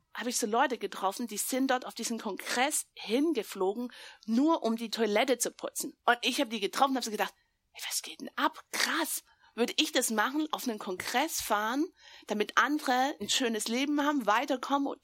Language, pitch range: German, 200-260 Hz